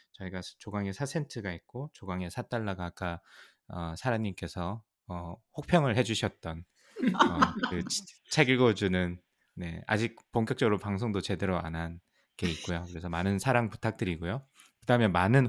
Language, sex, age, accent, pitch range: Korean, male, 20-39, native, 90-115 Hz